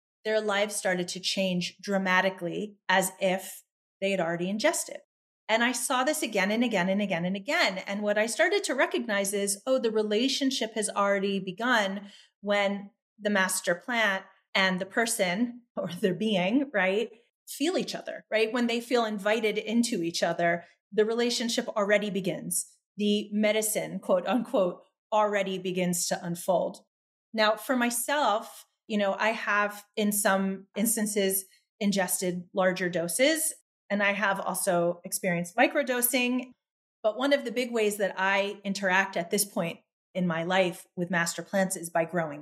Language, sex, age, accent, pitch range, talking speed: English, female, 30-49, American, 185-225 Hz, 155 wpm